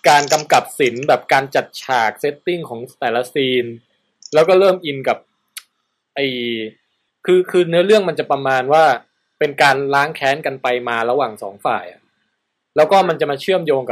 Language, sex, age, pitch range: Thai, male, 20-39, 130-180 Hz